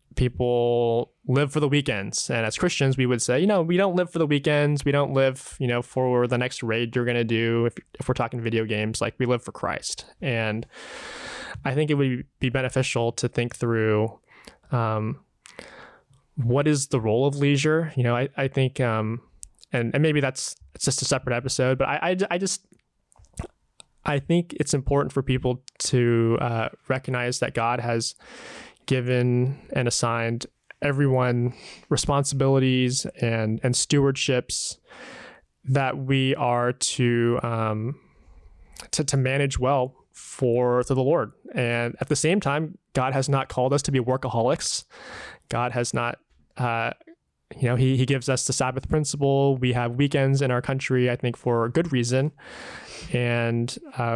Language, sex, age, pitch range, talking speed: English, male, 20-39, 120-140 Hz, 170 wpm